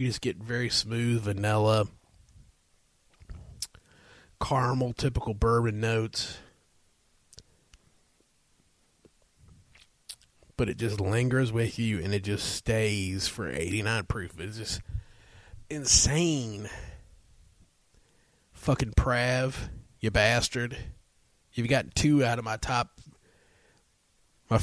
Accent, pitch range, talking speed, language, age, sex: American, 100-125 Hz, 95 wpm, English, 30-49, male